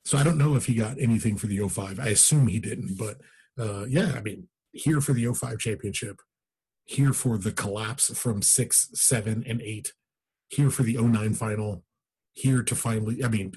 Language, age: English, 30-49